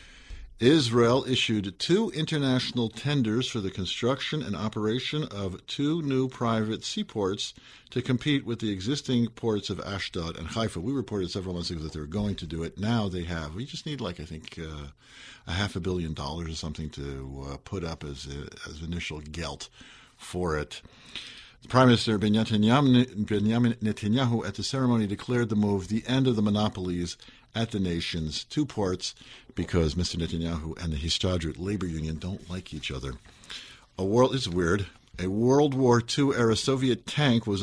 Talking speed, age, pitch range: 175 wpm, 50-69, 90-120 Hz